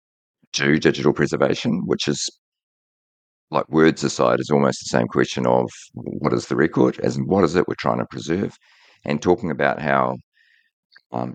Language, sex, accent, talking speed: English, male, Australian, 170 wpm